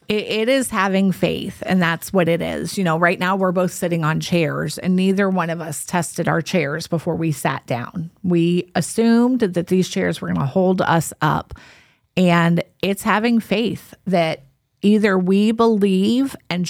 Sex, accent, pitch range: female, American, 165-200 Hz